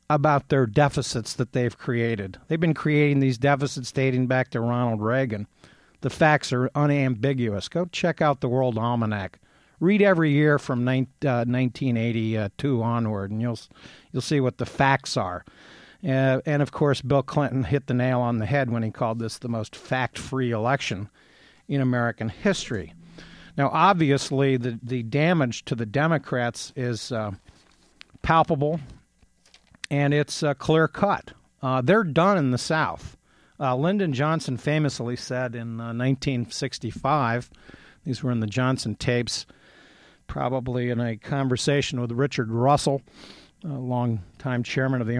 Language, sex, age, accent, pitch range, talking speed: English, male, 50-69, American, 120-145 Hz, 145 wpm